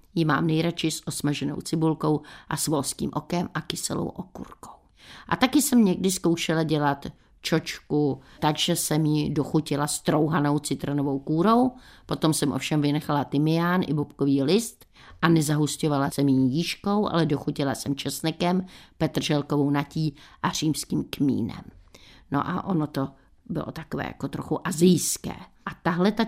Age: 50-69